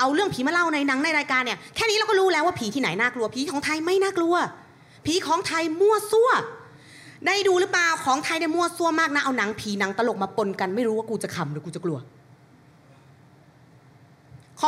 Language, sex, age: Thai, female, 30-49